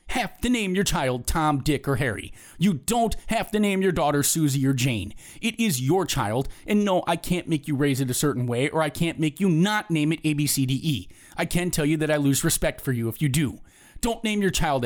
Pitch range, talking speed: 130-190 Hz, 240 wpm